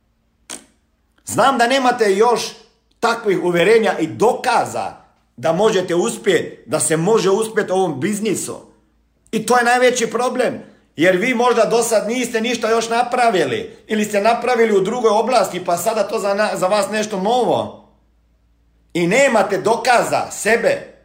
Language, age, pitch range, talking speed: Croatian, 50-69, 150-230 Hz, 145 wpm